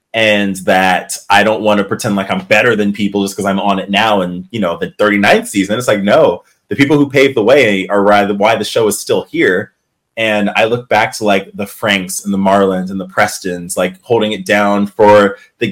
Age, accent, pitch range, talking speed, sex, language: 20-39, American, 100-120 Hz, 230 wpm, male, English